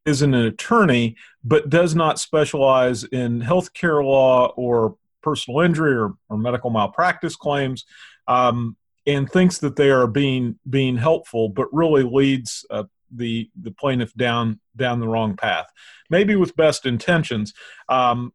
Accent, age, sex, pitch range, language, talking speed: American, 40-59, male, 120-150 Hz, English, 145 wpm